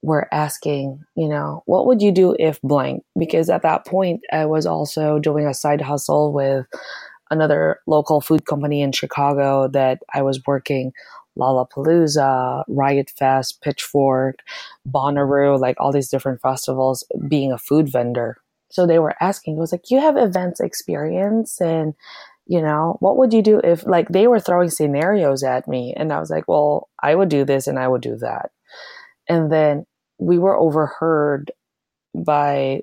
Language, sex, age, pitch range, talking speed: English, female, 20-39, 140-170 Hz, 170 wpm